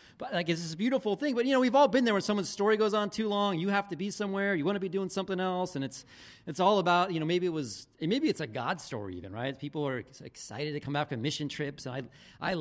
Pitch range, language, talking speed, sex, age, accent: 135-200 Hz, English, 285 wpm, male, 40-59, American